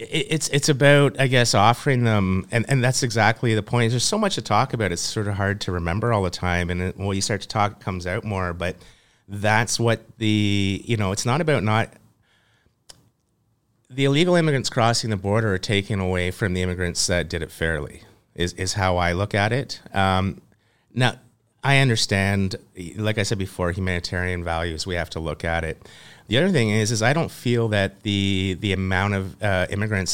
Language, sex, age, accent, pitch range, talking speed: English, male, 30-49, American, 90-115 Hz, 205 wpm